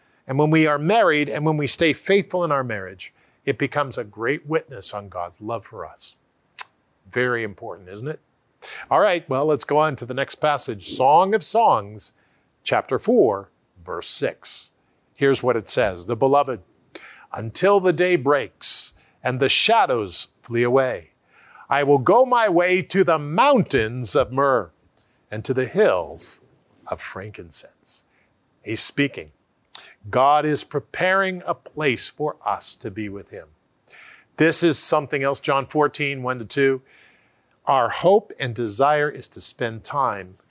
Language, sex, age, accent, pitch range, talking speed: English, male, 50-69, American, 125-165 Hz, 155 wpm